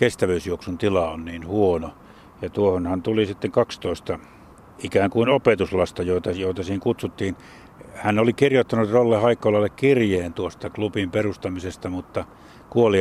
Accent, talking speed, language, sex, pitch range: native, 130 wpm, Finnish, male, 90-110 Hz